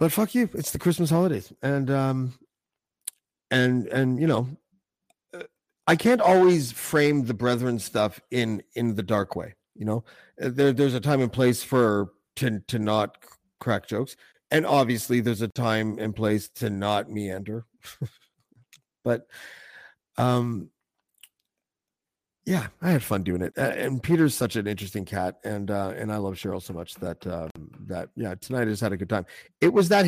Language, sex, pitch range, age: English, male, 105-145 Hz, 50-69